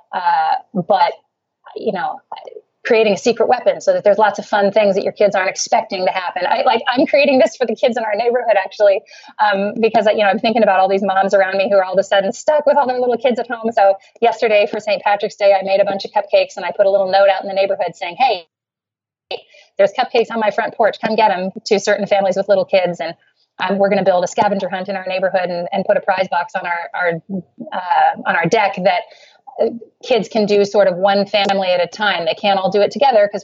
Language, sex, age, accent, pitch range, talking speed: English, female, 30-49, American, 190-230 Hz, 250 wpm